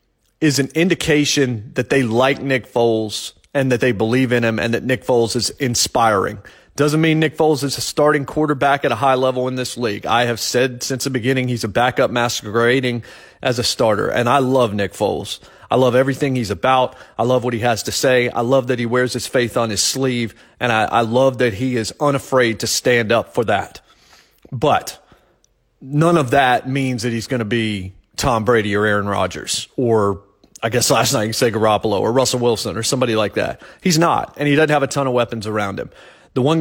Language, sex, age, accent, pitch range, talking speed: English, male, 30-49, American, 120-140 Hz, 215 wpm